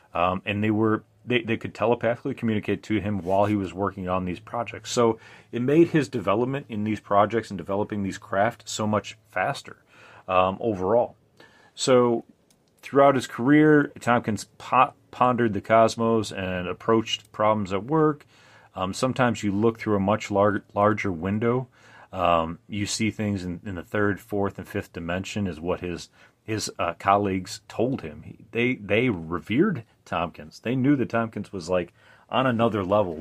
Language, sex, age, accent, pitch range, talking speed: English, male, 30-49, American, 95-115 Hz, 165 wpm